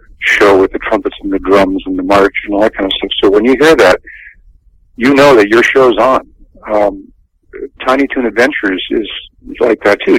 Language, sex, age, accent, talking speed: English, male, 50-69, American, 205 wpm